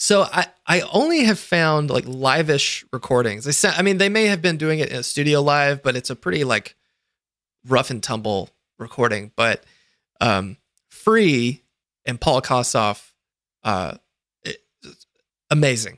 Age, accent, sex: 20-39, American, male